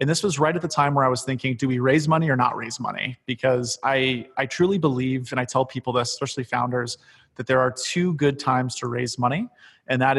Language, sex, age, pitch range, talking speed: English, male, 30-49, 125-140 Hz, 245 wpm